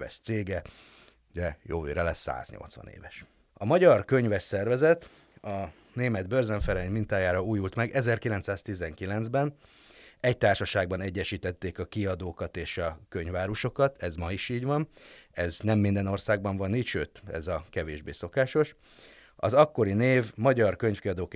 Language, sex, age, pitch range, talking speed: Hungarian, male, 30-49, 90-115 Hz, 125 wpm